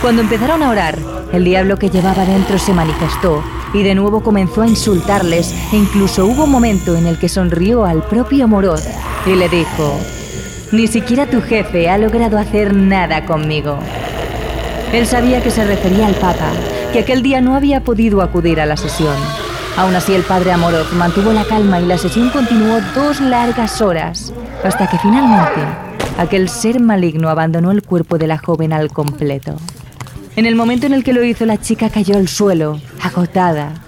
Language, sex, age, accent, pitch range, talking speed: Spanish, female, 30-49, Spanish, 165-220 Hz, 180 wpm